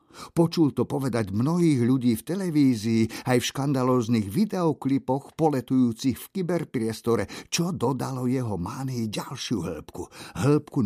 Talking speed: 115 wpm